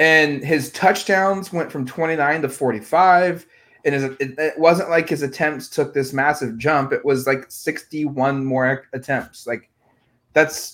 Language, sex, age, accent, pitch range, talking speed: English, male, 20-39, American, 125-150 Hz, 145 wpm